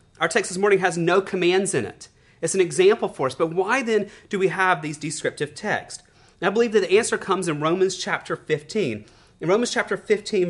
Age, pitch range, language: 30-49, 160-210 Hz, English